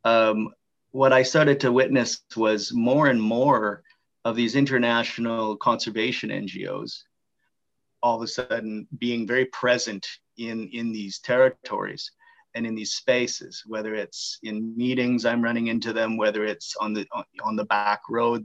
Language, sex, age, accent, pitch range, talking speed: English, male, 30-49, American, 110-130 Hz, 150 wpm